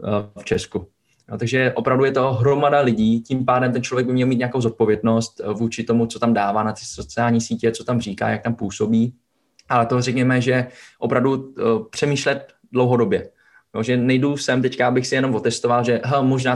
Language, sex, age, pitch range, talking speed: Czech, male, 20-39, 115-125 Hz, 180 wpm